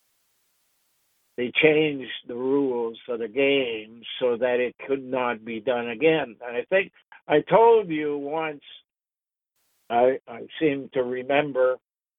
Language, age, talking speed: English, 60-79, 135 wpm